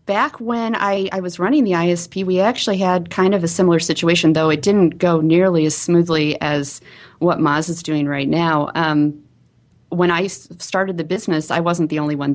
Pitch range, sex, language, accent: 145-170 Hz, female, English, American